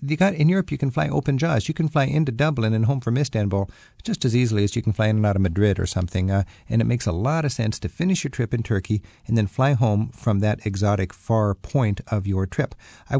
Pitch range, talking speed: 105-135 Hz, 260 wpm